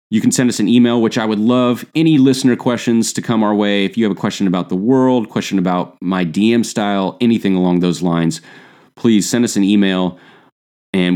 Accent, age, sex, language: American, 30-49, male, English